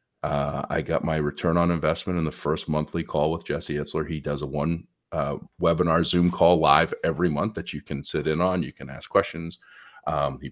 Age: 40-59